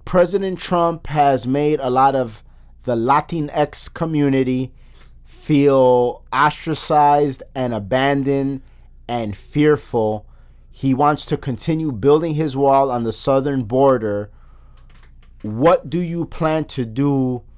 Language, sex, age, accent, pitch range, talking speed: English, male, 30-49, American, 115-160 Hz, 115 wpm